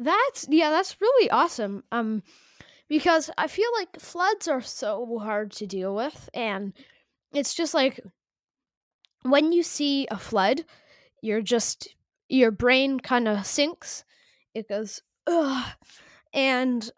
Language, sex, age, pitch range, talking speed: English, female, 10-29, 225-315 Hz, 125 wpm